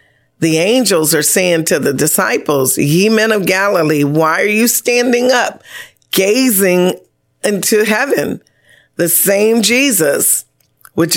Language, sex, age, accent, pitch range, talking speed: English, female, 40-59, American, 155-210 Hz, 125 wpm